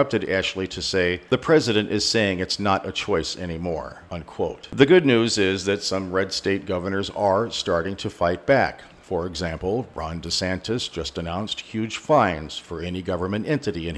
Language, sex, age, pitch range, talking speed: English, male, 50-69, 90-110 Hz, 170 wpm